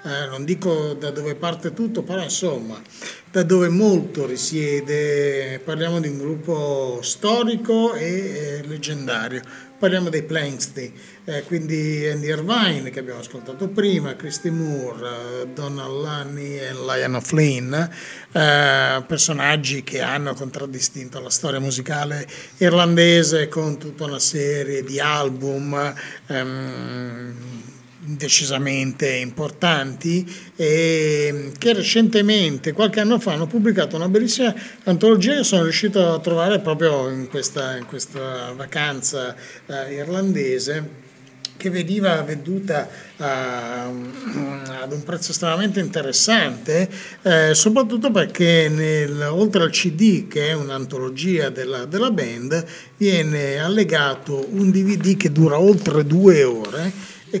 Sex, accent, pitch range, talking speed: male, native, 135-180 Hz, 115 wpm